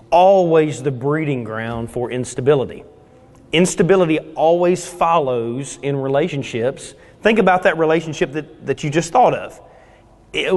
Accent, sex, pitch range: American, male, 140-185 Hz